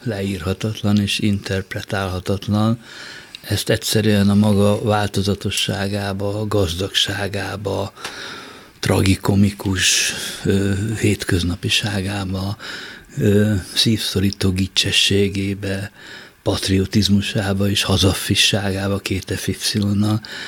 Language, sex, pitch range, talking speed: Hungarian, male, 100-110 Hz, 60 wpm